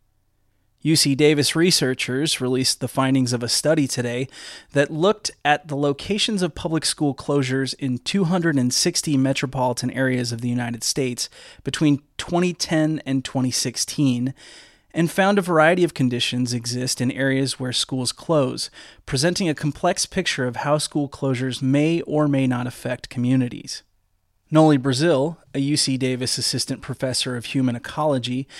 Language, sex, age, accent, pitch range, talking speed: English, male, 30-49, American, 125-150 Hz, 140 wpm